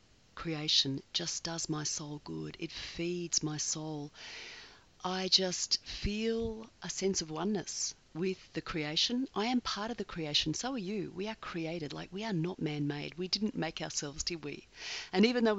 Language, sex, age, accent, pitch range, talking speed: English, female, 40-59, Australian, 155-200 Hz, 175 wpm